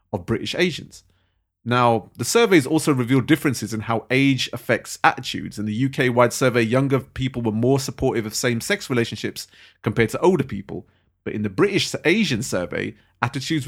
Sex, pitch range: male, 110-130 Hz